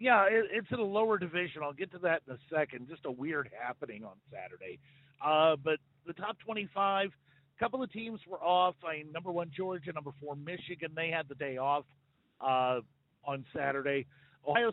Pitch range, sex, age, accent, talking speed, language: 140-185 Hz, male, 50-69, American, 190 wpm, English